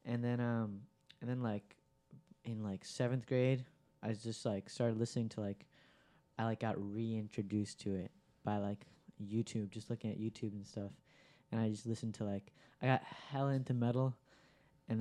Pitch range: 105-125 Hz